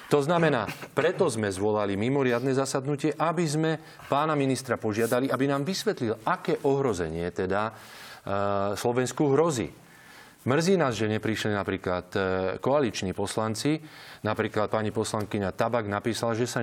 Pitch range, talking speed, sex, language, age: 110-145 Hz, 125 wpm, male, Slovak, 30-49